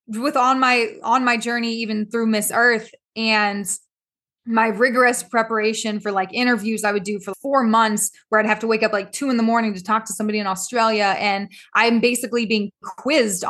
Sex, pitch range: female, 200-235 Hz